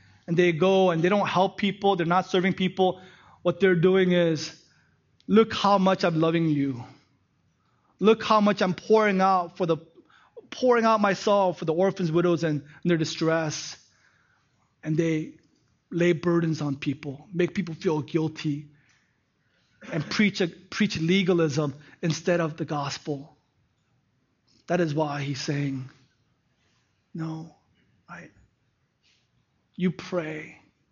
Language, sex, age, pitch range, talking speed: English, male, 20-39, 155-190 Hz, 145 wpm